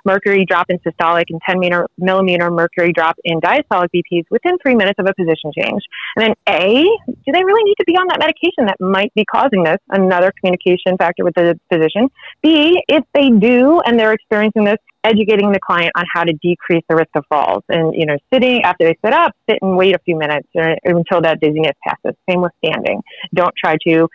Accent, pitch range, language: American, 175-265 Hz, English